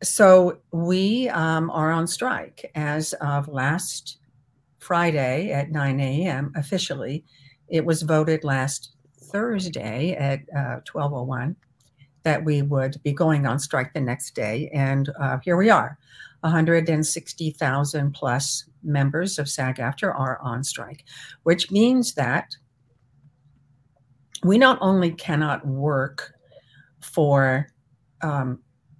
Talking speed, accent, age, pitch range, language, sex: 115 wpm, American, 60-79, 140-165 Hz, English, female